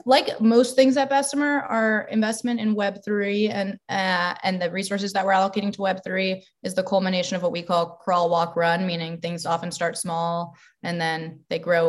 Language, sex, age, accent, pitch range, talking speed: English, female, 20-39, American, 170-215 Hz, 200 wpm